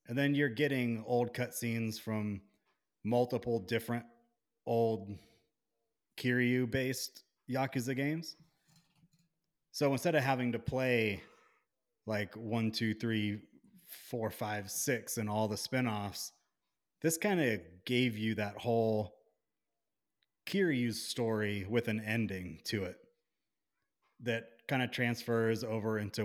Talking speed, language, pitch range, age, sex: 115 wpm, English, 110-125 Hz, 30-49, male